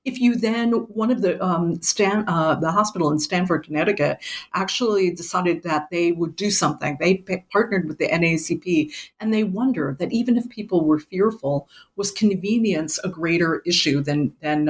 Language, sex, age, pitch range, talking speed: English, female, 50-69, 155-205 Hz, 175 wpm